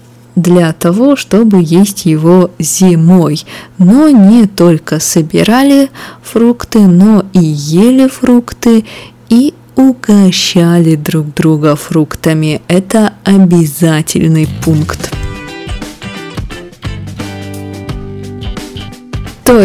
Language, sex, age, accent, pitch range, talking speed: Russian, female, 20-39, native, 165-210 Hz, 75 wpm